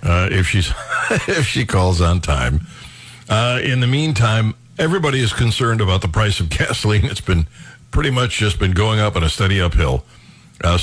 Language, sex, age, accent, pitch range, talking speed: English, male, 60-79, American, 100-125 Hz, 185 wpm